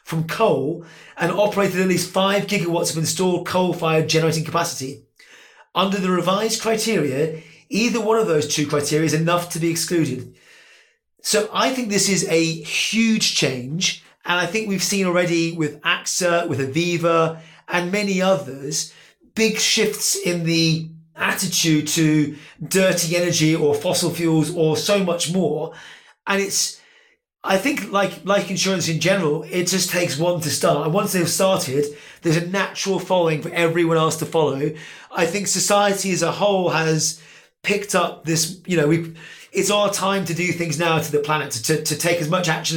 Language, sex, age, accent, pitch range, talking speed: English, male, 30-49, British, 160-190 Hz, 170 wpm